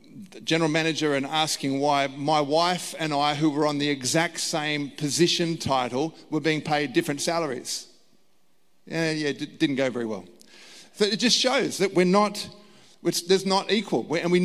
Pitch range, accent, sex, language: 145-180 Hz, Australian, male, English